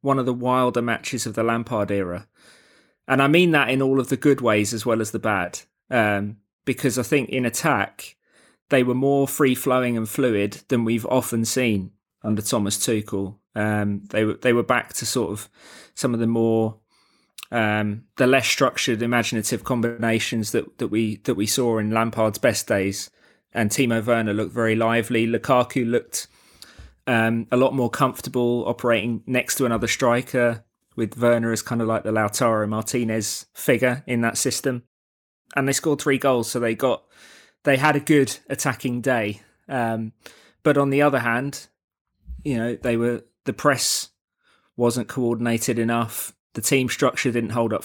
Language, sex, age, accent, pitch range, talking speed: English, male, 20-39, British, 110-130 Hz, 175 wpm